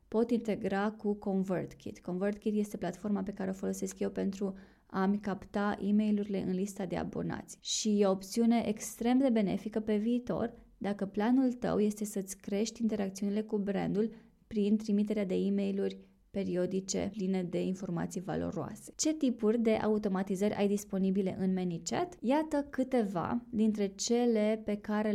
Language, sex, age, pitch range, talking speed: Romanian, female, 20-39, 190-220 Hz, 145 wpm